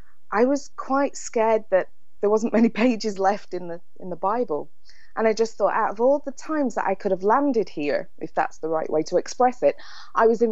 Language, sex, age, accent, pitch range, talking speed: English, female, 20-39, British, 185-235 Hz, 235 wpm